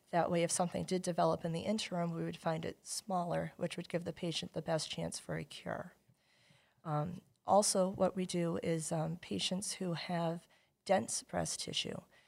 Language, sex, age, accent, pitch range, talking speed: English, female, 40-59, American, 160-180 Hz, 185 wpm